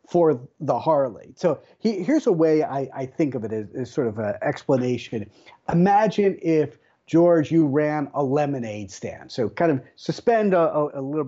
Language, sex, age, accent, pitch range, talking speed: English, male, 40-59, American, 135-185 Hz, 185 wpm